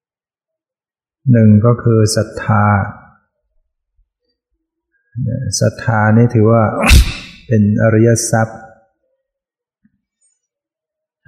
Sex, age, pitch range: male, 60-79, 105-120 Hz